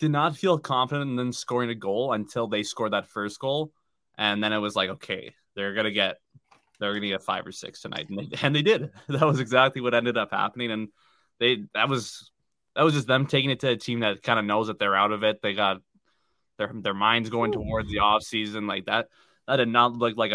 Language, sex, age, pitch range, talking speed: English, male, 20-39, 105-130 Hz, 240 wpm